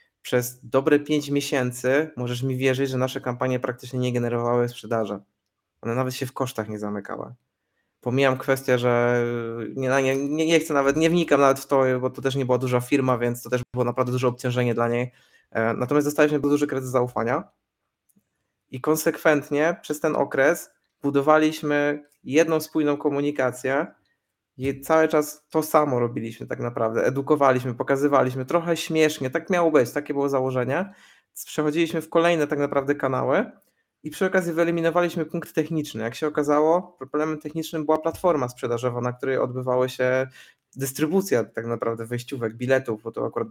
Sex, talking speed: male, 160 wpm